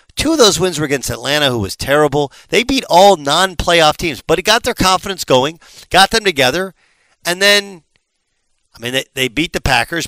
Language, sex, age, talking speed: English, male, 50-69, 200 wpm